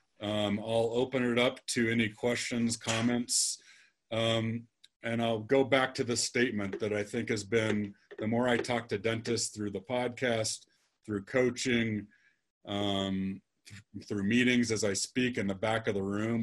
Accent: American